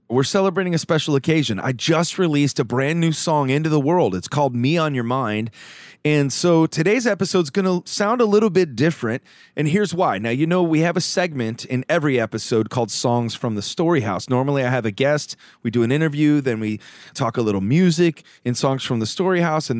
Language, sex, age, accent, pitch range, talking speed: English, male, 30-49, American, 120-155 Hz, 220 wpm